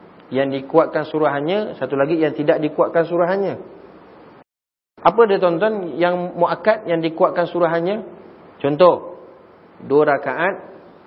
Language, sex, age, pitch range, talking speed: Malay, male, 30-49, 145-200 Hz, 110 wpm